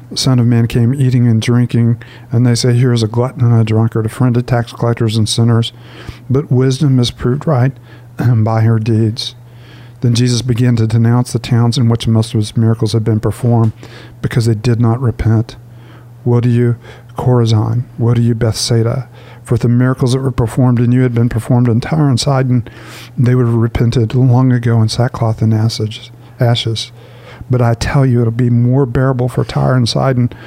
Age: 50-69